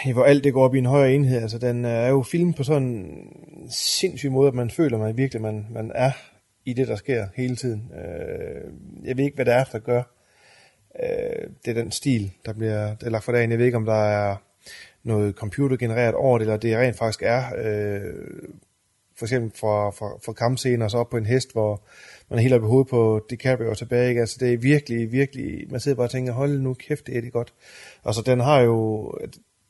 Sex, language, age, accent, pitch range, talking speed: male, Danish, 30-49, native, 110-130 Hz, 230 wpm